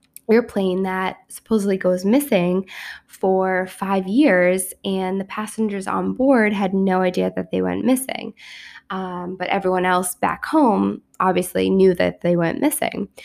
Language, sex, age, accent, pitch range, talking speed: English, female, 10-29, American, 185-220 Hz, 145 wpm